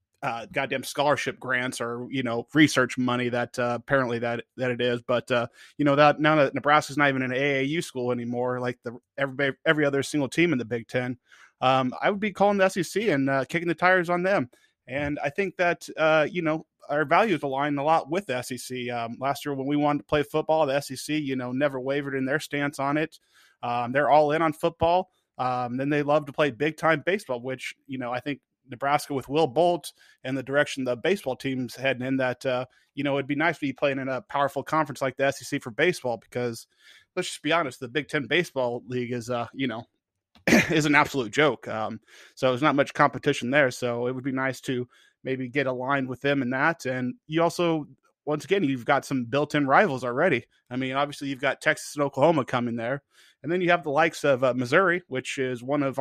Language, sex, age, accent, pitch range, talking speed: English, male, 20-39, American, 125-150 Hz, 230 wpm